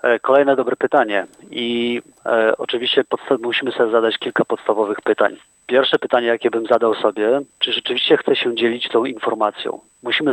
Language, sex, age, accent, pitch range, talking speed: Polish, male, 40-59, native, 115-135 Hz, 145 wpm